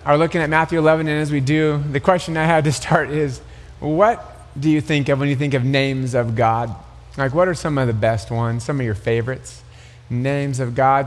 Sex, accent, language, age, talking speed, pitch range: male, American, English, 30-49, 235 wpm, 115-155 Hz